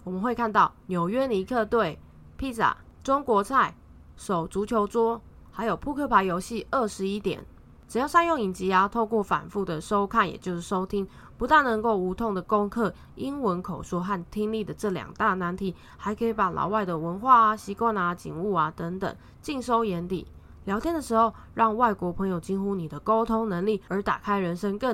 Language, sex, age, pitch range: English, female, 20-39, 190-230 Hz